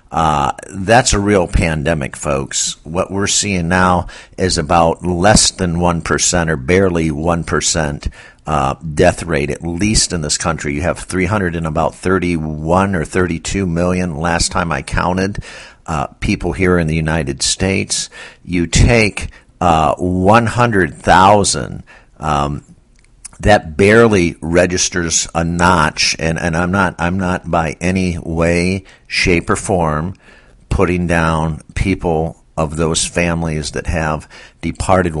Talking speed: 135 wpm